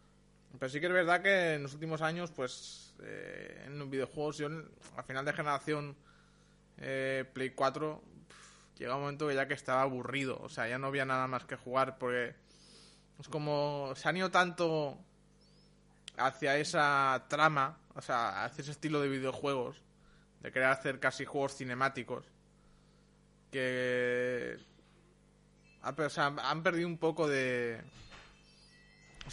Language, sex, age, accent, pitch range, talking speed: Spanish, male, 20-39, Spanish, 130-160 Hz, 150 wpm